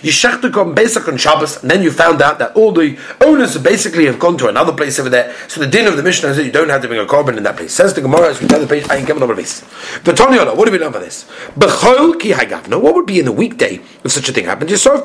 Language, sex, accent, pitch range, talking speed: English, male, British, 190-260 Hz, 305 wpm